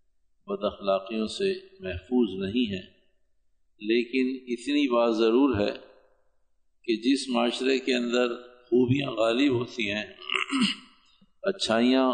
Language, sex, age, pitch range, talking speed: Urdu, male, 50-69, 105-130 Hz, 105 wpm